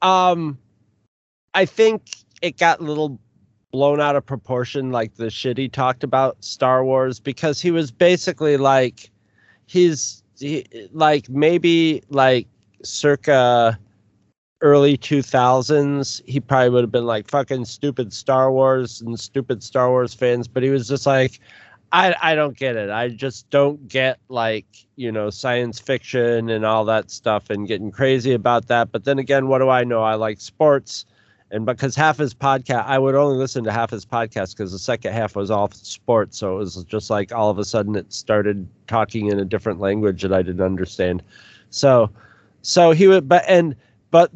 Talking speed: 180 wpm